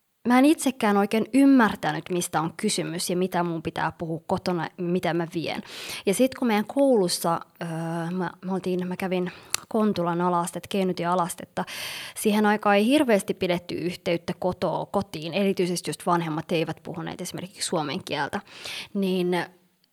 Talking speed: 150 wpm